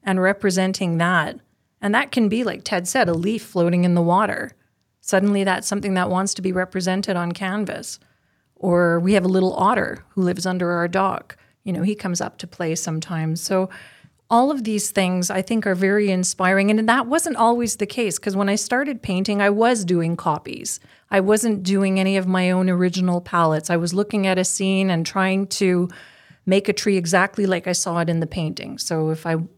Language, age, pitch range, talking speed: English, 30-49, 175-210 Hz, 205 wpm